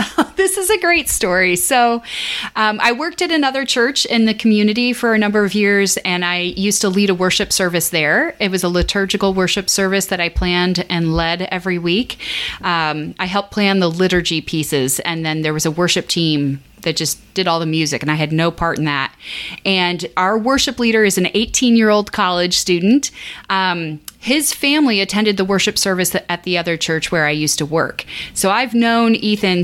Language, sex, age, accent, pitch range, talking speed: English, female, 30-49, American, 170-210 Hz, 200 wpm